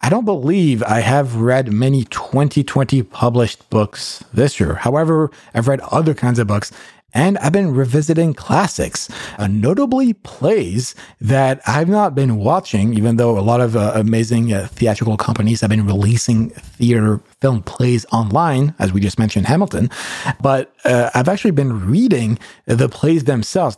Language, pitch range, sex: English, 110-145 Hz, male